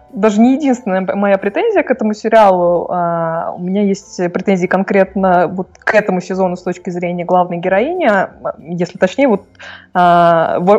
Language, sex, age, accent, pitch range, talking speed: Russian, female, 20-39, native, 185-255 Hz, 160 wpm